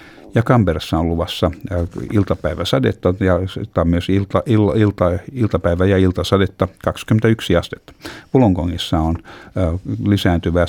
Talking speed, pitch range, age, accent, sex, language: 95 wpm, 85-105 Hz, 60-79, native, male, Finnish